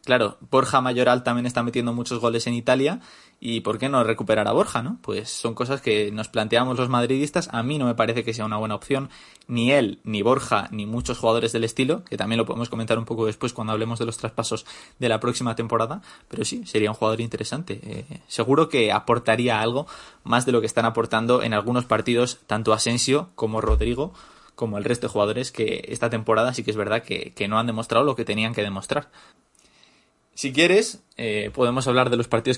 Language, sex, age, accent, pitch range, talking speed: Spanish, male, 20-39, Spanish, 110-135 Hz, 215 wpm